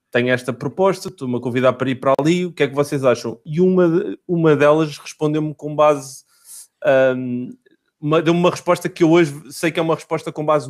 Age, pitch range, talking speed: 30-49, 140-165 Hz, 200 wpm